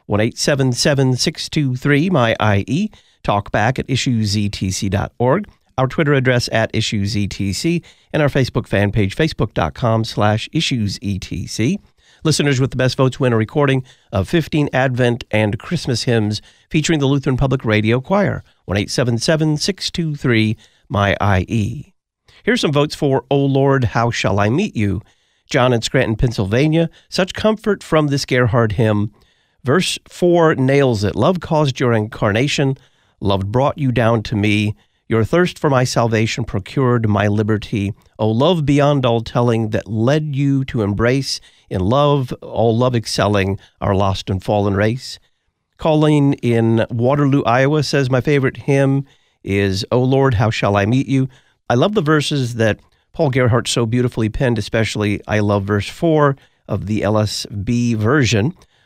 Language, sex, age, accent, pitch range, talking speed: English, male, 50-69, American, 105-140 Hz, 150 wpm